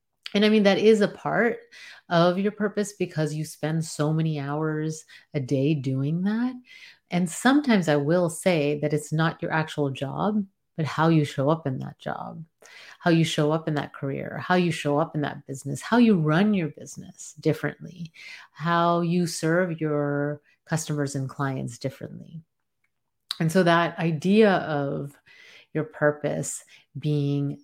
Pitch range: 150-185 Hz